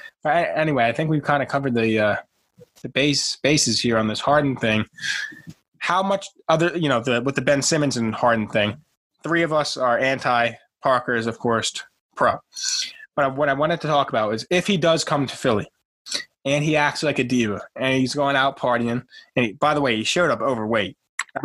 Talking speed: 215 wpm